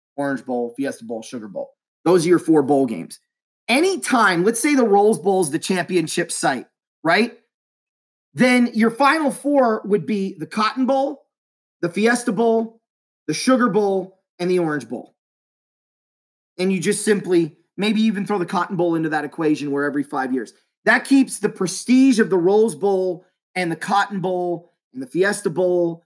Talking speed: 170 wpm